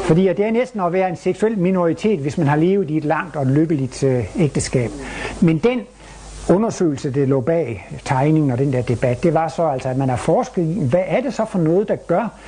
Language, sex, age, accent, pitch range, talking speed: Danish, male, 60-79, native, 130-170 Hz, 230 wpm